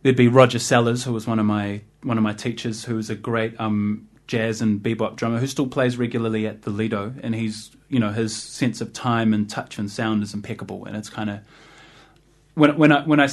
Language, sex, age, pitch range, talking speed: English, male, 20-39, 110-140 Hz, 240 wpm